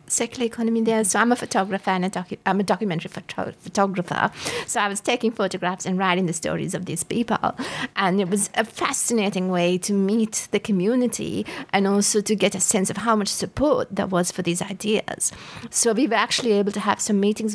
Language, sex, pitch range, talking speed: English, female, 190-220 Hz, 210 wpm